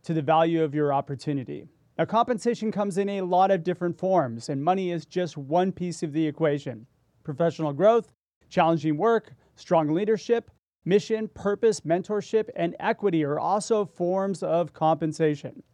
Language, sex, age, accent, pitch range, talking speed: English, male, 30-49, American, 155-195 Hz, 155 wpm